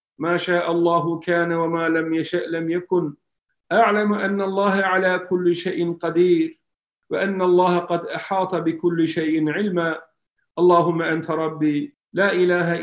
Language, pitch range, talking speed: Turkish, 165-195 Hz, 130 wpm